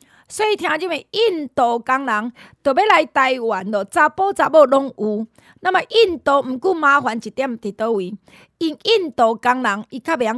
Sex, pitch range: female, 225-330 Hz